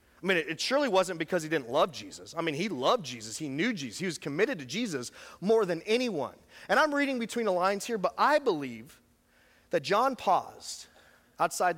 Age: 30-49